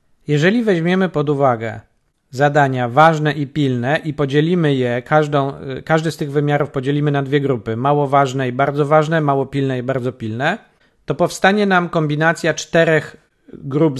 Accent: native